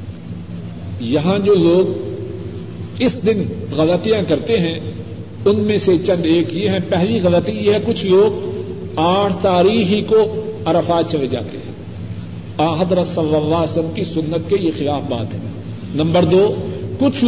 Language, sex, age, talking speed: Urdu, male, 50-69, 150 wpm